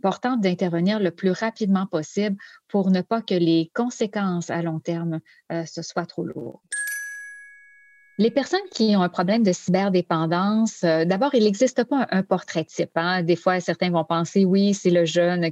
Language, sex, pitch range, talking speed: French, female, 170-220 Hz, 180 wpm